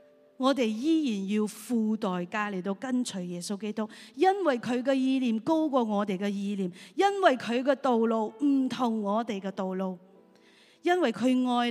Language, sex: Chinese, female